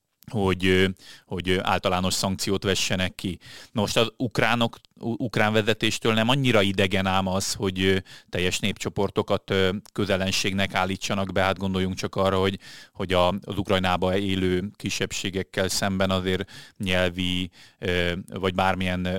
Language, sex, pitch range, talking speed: Hungarian, male, 95-105 Hz, 115 wpm